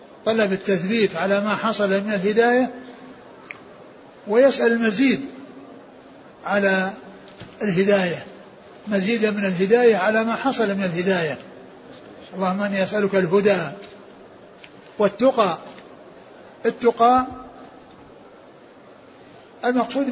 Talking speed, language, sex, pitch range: 80 wpm, Arabic, male, 200-225 Hz